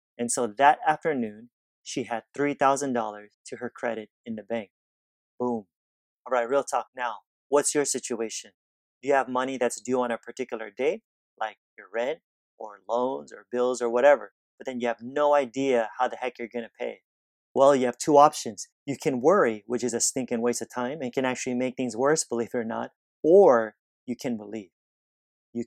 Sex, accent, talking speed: male, American, 195 wpm